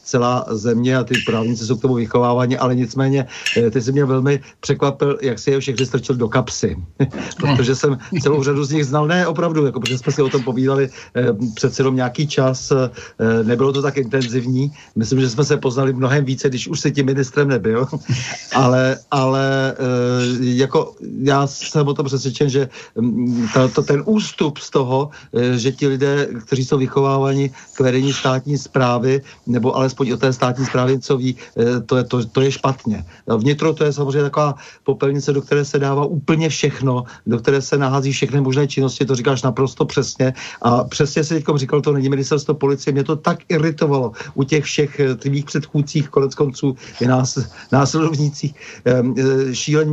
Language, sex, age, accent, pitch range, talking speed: Czech, male, 50-69, native, 125-145 Hz, 170 wpm